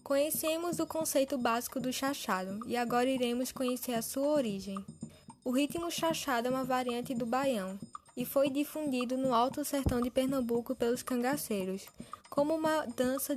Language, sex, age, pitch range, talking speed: Portuguese, female, 10-29, 235-275 Hz, 155 wpm